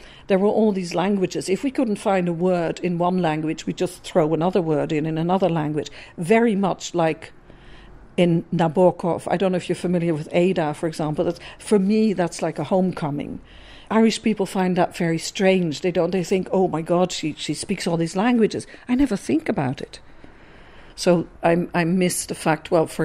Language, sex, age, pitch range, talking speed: English, female, 50-69, 155-180 Hz, 200 wpm